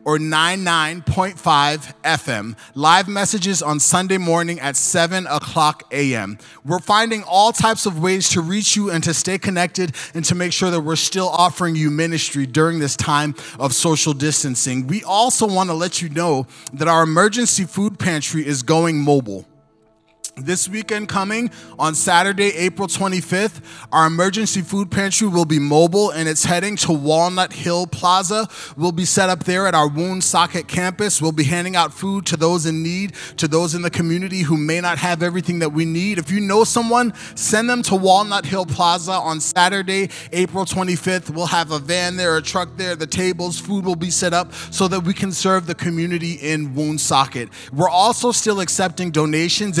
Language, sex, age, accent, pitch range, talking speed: English, male, 30-49, American, 155-190 Hz, 185 wpm